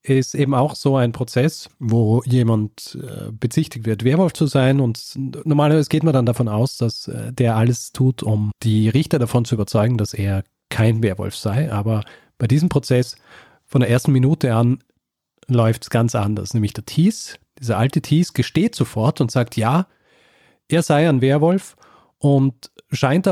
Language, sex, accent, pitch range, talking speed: German, male, German, 115-140 Hz, 165 wpm